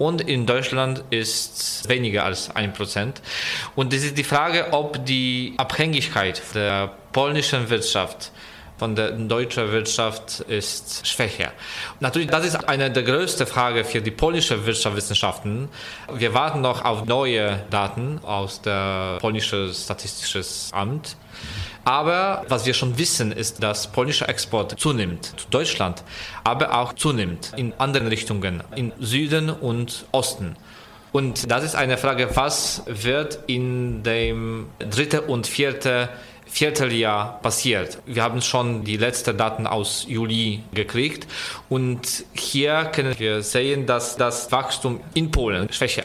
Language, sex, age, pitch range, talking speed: English, male, 20-39, 110-135 Hz, 135 wpm